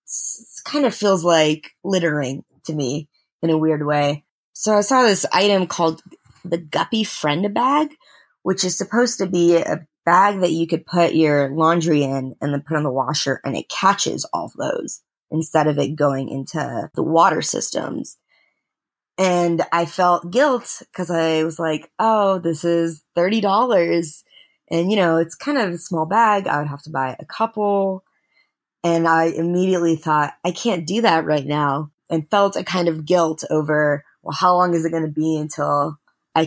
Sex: female